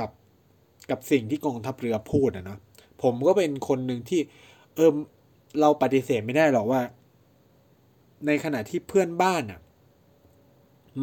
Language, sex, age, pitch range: Thai, male, 20-39, 110-145 Hz